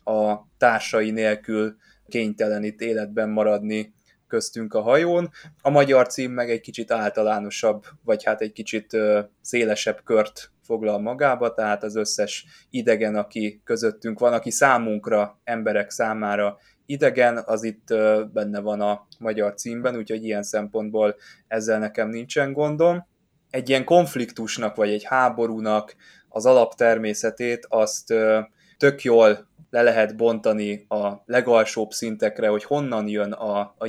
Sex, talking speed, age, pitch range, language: male, 130 wpm, 20-39, 105-120 Hz, Hungarian